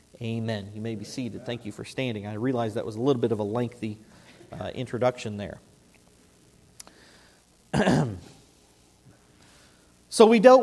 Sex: male